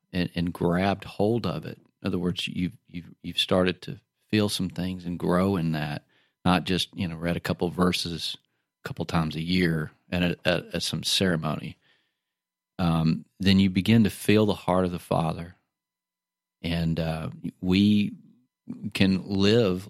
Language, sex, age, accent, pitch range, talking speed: English, male, 40-59, American, 90-115 Hz, 175 wpm